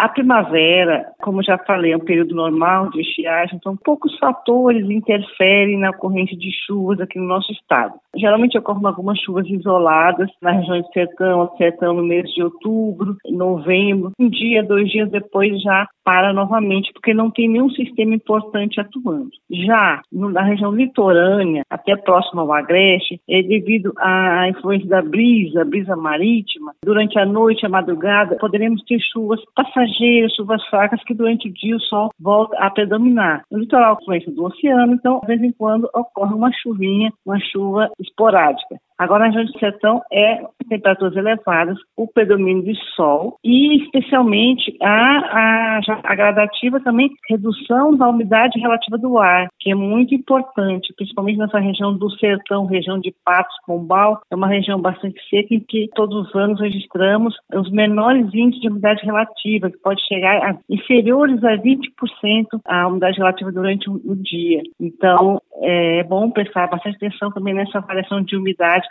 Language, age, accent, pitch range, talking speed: Portuguese, 40-59, Brazilian, 185-225 Hz, 160 wpm